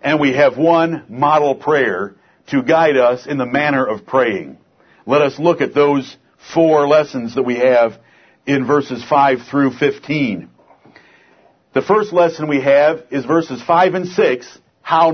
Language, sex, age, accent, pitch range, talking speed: English, male, 50-69, American, 145-185 Hz, 160 wpm